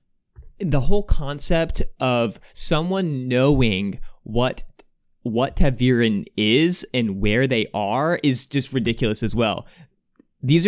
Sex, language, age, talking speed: male, English, 20-39, 110 wpm